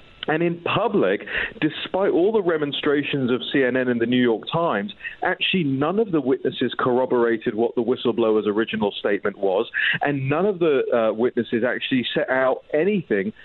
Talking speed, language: 160 wpm, English